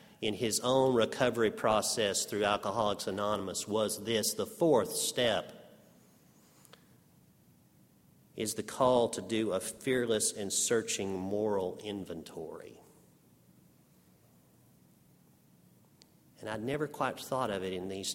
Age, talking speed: 50-69, 110 wpm